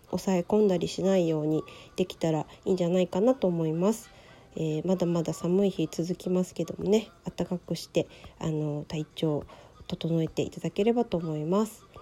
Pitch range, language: 170-200 Hz, Japanese